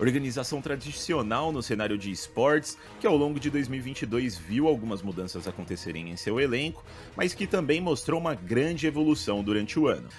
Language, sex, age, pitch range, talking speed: Portuguese, male, 30-49, 105-145 Hz, 165 wpm